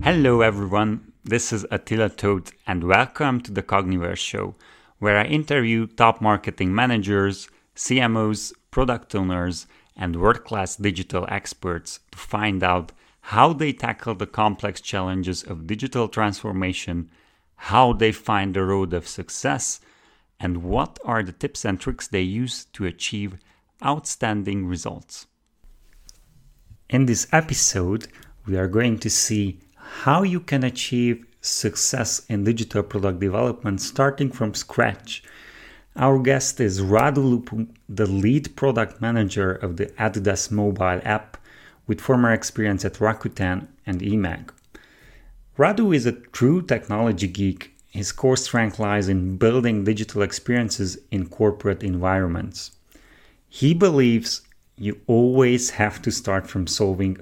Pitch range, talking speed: 95-120 Hz, 130 wpm